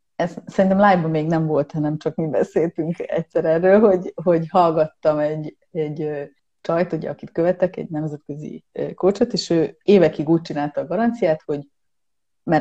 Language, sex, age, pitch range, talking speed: Hungarian, female, 30-49, 150-195 Hz, 155 wpm